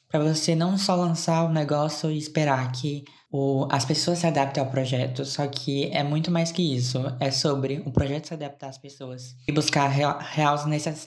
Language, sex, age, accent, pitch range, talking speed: Portuguese, female, 20-39, Brazilian, 135-155 Hz, 185 wpm